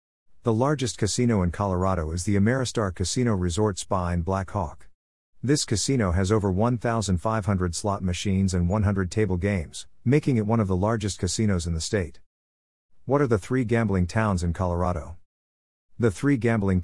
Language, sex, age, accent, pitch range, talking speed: English, male, 50-69, American, 90-115 Hz, 165 wpm